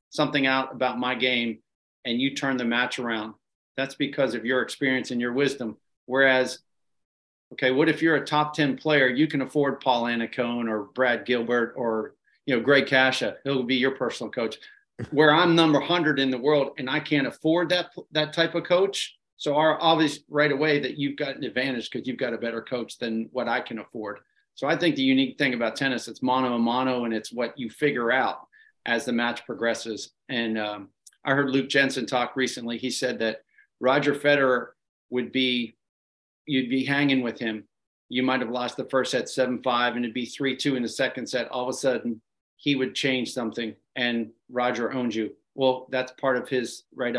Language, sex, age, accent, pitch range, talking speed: English, male, 40-59, American, 120-140 Hz, 205 wpm